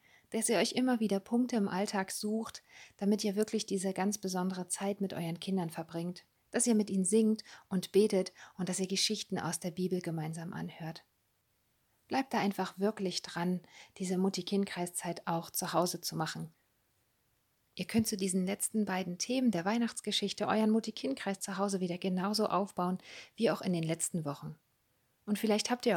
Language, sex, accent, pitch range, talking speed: German, female, German, 170-210 Hz, 175 wpm